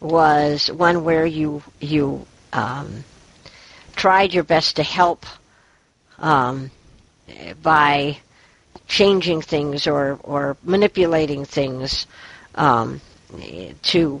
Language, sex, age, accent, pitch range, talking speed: English, female, 60-79, American, 145-190 Hz, 90 wpm